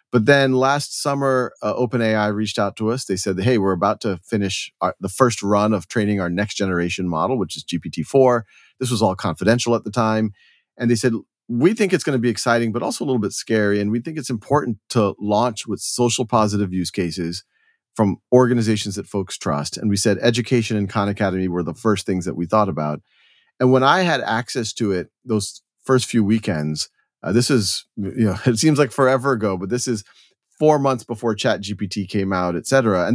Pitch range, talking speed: 100-125 Hz, 210 wpm